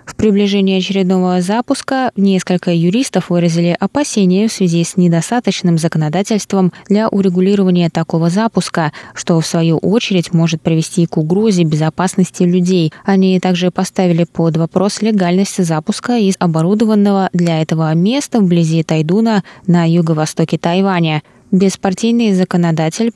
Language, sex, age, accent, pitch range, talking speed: Russian, female, 20-39, native, 165-200 Hz, 120 wpm